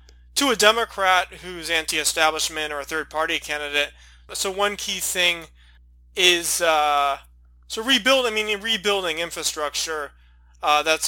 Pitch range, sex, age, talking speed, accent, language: 145-185 Hz, male, 20-39, 115 wpm, American, English